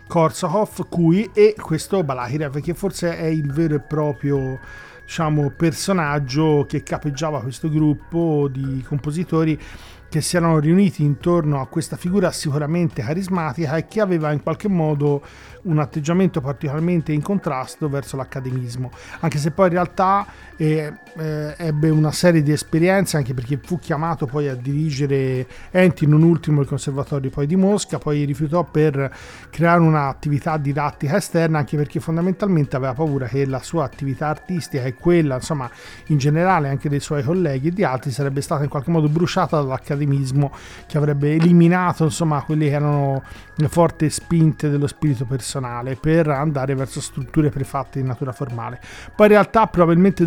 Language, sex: Italian, male